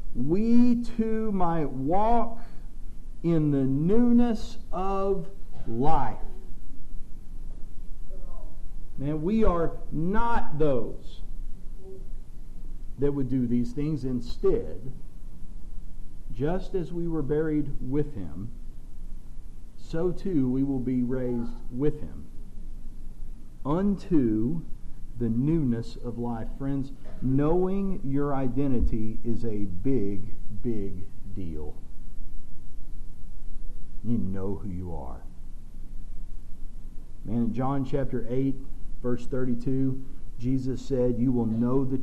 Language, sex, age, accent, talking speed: English, male, 50-69, American, 95 wpm